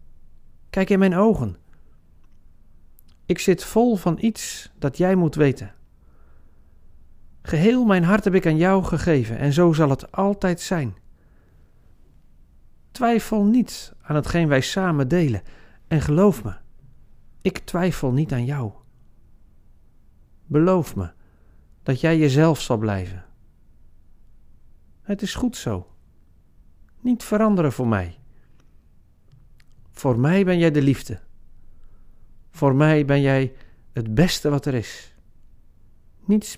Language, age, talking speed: Dutch, 40-59, 120 wpm